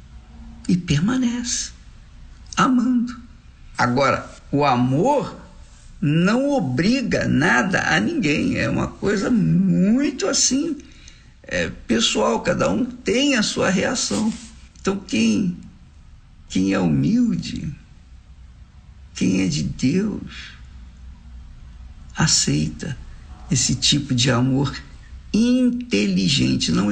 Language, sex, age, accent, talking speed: Portuguese, male, 60-79, Brazilian, 85 wpm